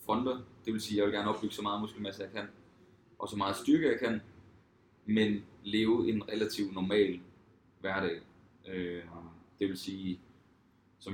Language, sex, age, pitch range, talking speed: Danish, male, 20-39, 95-105 Hz, 160 wpm